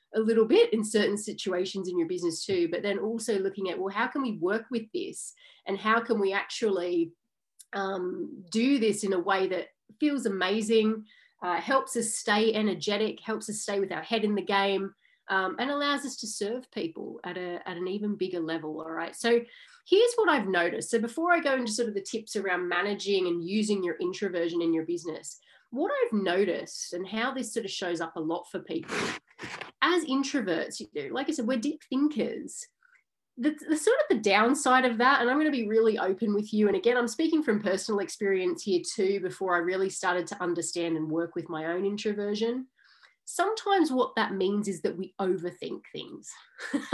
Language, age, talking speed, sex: English, 30-49, 205 wpm, female